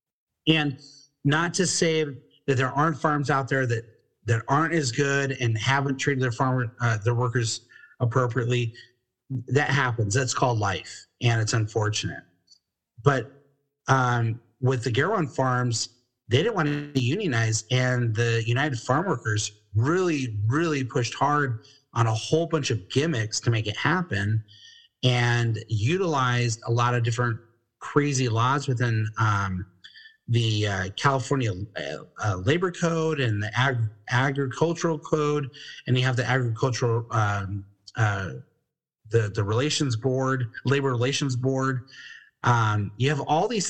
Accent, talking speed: American, 145 wpm